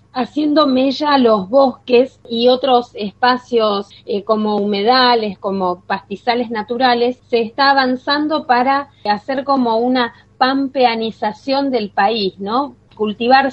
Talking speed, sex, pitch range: 110 wpm, female, 210-260 Hz